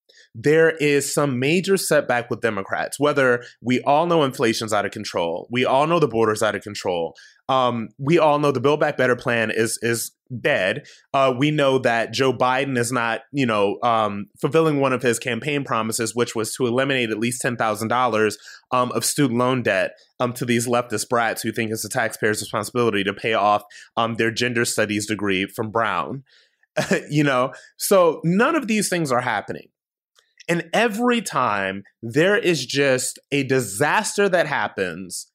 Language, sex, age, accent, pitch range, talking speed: English, male, 20-39, American, 115-150 Hz, 175 wpm